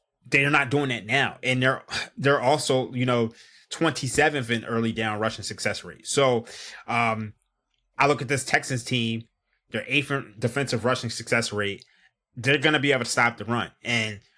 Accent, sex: American, male